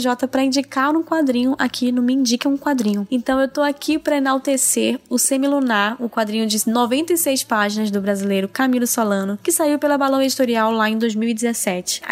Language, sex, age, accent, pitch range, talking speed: Portuguese, female, 10-29, Brazilian, 215-270 Hz, 185 wpm